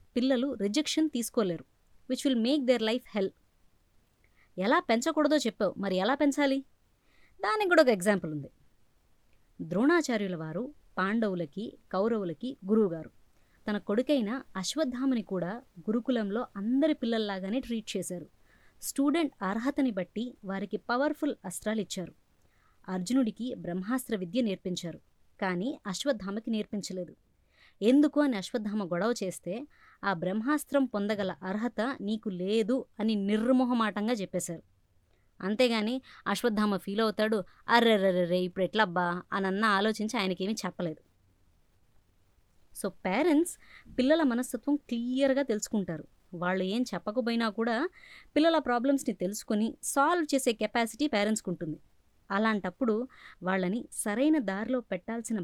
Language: Telugu